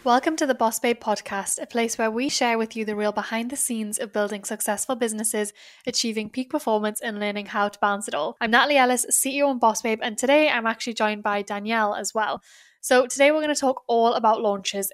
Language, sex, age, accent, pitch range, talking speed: English, female, 10-29, British, 215-255 Hz, 230 wpm